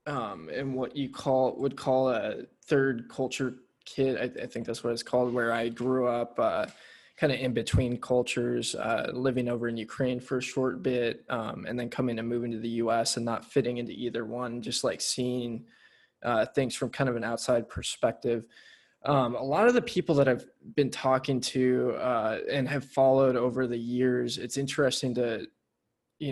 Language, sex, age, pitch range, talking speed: English, male, 20-39, 120-135 Hz, 205 wpm